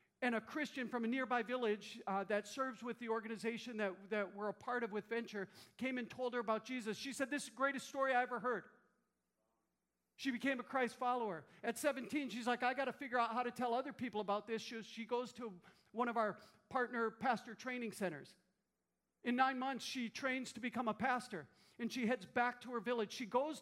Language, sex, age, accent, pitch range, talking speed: English, male, 50-69, American, 210-250 Hz, 220 wpm